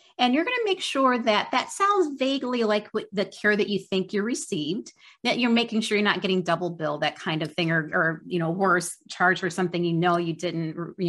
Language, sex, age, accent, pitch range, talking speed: English, female, 30-49, American, 165-205 Hz, 240 wpm